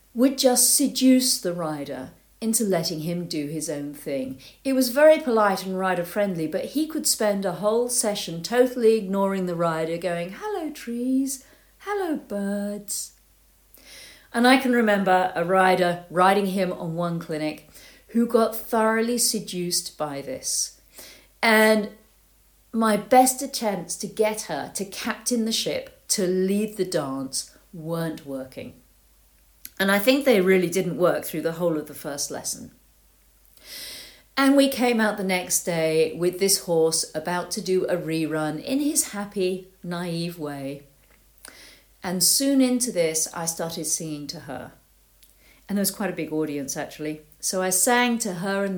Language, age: English, 50-69